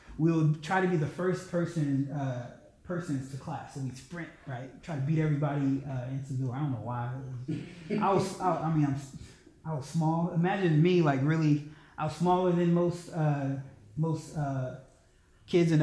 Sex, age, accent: male, 20-39, American